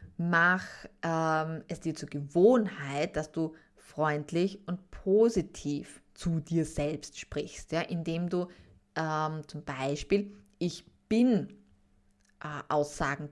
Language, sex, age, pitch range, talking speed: German, female, 20-39, 150-200 Hz, 100 wpm